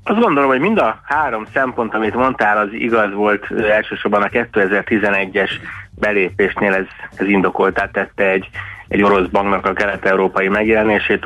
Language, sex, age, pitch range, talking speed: Hungarian, male, 30-49, 95-110 Hz, 150 wpm